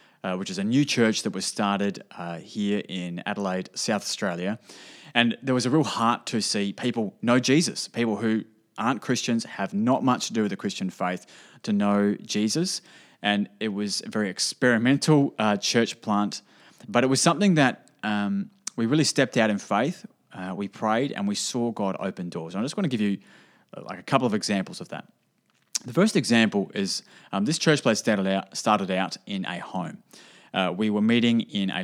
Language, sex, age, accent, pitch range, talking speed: English, male, 20-39, Australian, 100-130 Hz, 200 wpm